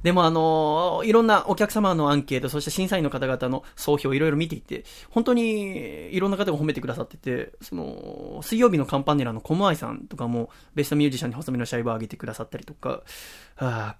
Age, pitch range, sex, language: 20-39, 125-200 Hz, male, Japanese